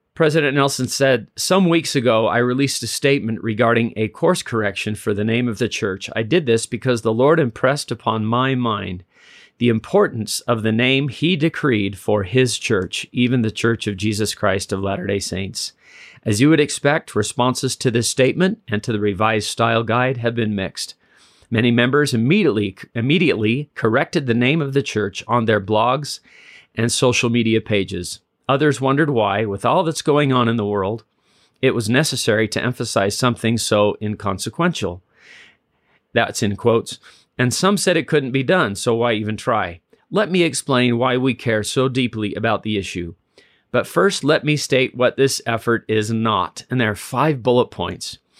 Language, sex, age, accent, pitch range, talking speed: English, male, 40-59, American, 110-135 Hz, 175 wpm